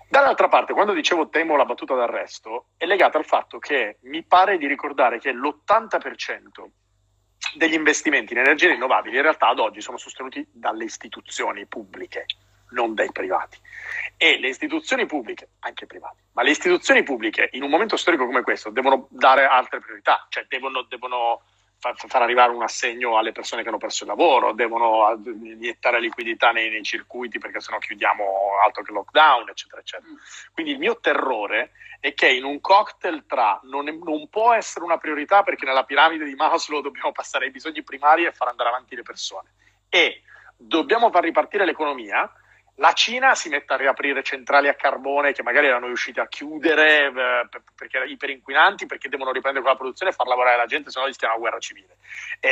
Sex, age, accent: male, 40-59, native